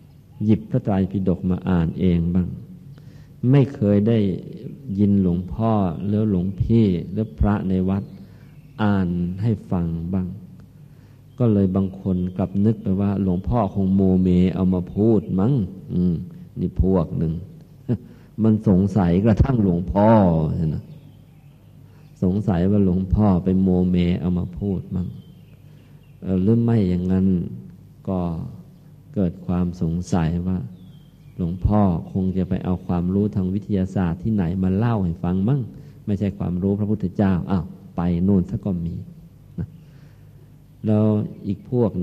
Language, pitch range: Thai, 90-120 Hz